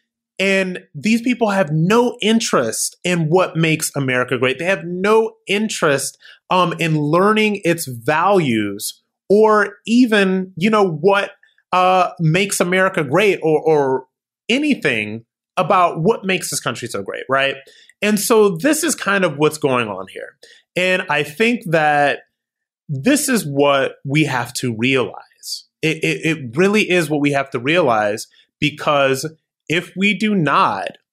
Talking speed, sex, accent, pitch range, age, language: 145 wpm, male, American, 140-195 Hz, 30-49, English